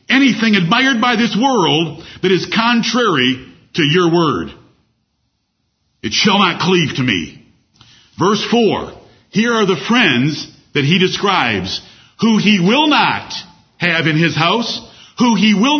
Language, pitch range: English, 165-220 Hz